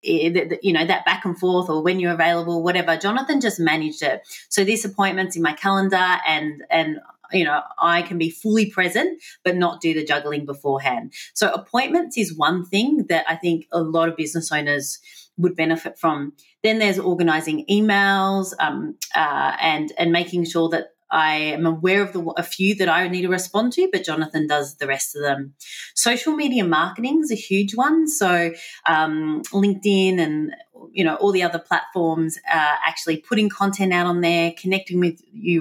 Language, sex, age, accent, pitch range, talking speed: English, female, 30-49, Australian, 155-185 Hz, 185 wpm